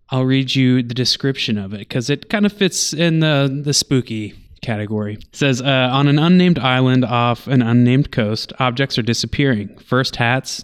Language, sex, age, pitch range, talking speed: English, male, 20-39, 115-135 Hz, 185 wpm